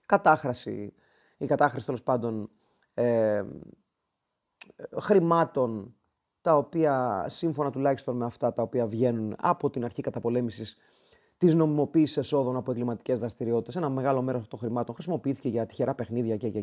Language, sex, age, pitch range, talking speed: Greek, male, 30-49, 120-155 Hz, 135 wpm